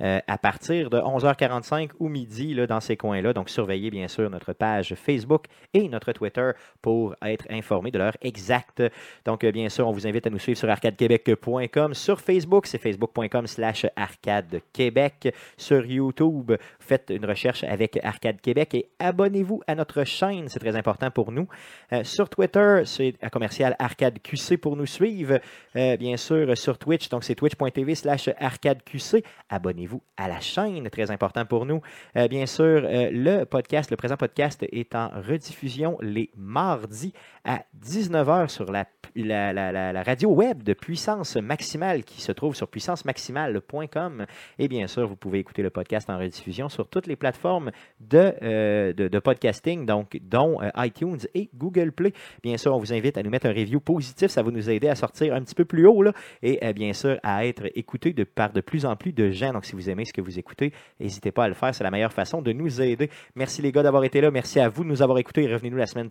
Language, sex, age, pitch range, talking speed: French, male, 30-49, 110-150 Hz, 195 wpm